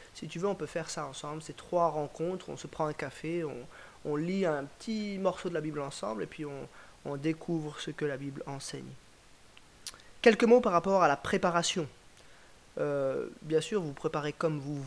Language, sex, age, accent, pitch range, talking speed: French, male, 30-49, French, 155-210 Hz, 205 wpm